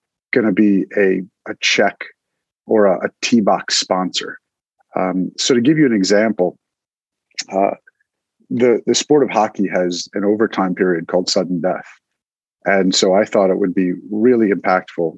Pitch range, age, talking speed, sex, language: 95-110 Hz, 40-59, 160 wpm, male, English